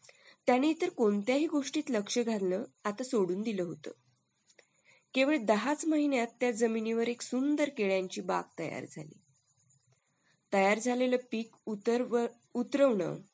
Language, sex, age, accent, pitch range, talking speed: Marathi, female, 20-39, native, 200-255 Hz, 110 wpm